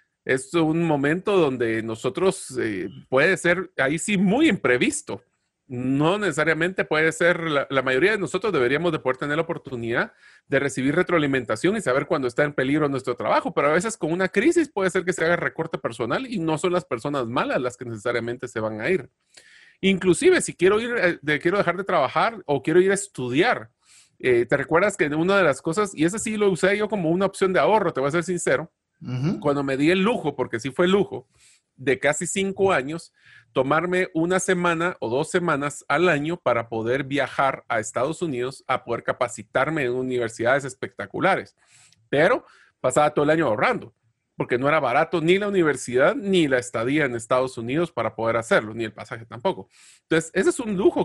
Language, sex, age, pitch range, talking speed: Spanish, male, 40-59, 130-185 Hz, 195 wpm